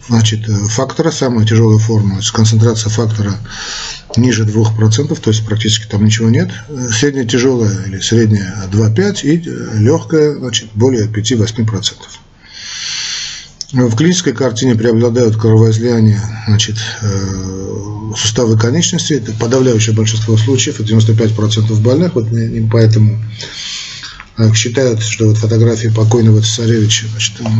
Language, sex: Russian, male